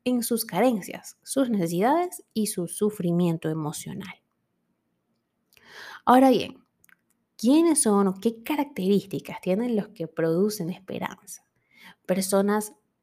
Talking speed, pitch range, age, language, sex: 100 wpm, 175-235 Hz, 20-39, Spanish, female